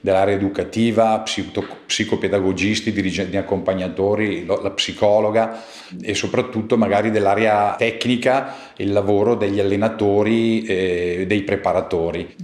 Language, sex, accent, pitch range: Italian, male, native, 100-110 Hz